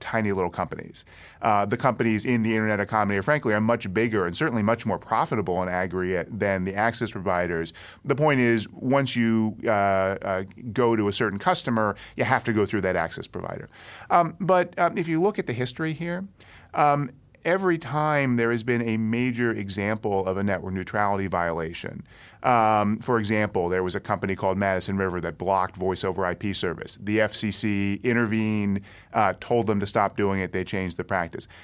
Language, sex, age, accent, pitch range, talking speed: English, male, 30-49, American, 95-125 Hz, 190 wpm